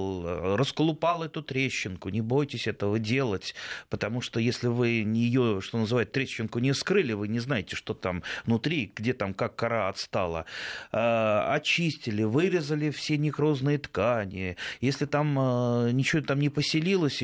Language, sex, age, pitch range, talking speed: Russian, male, 30-49, 100-135 Hz, 145 wpm